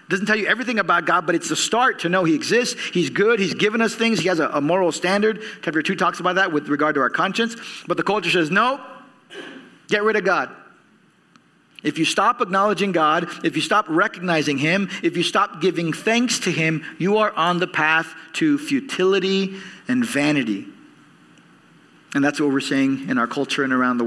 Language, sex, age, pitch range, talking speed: English, male, 40-59, 145-195 Hz, 205 wpm